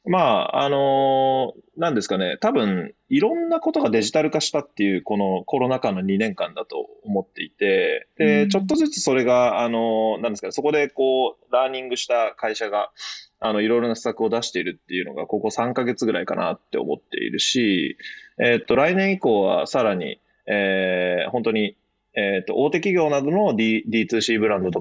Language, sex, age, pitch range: Japanese, male, 20-39, 105-145 Hz